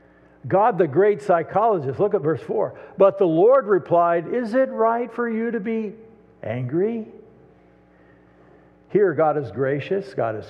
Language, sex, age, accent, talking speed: English, male, 60-79, American, 150 wpm